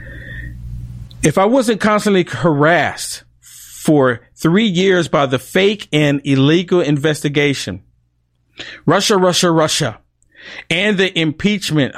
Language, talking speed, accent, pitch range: English, 100 wpm, American, 130-170 Hz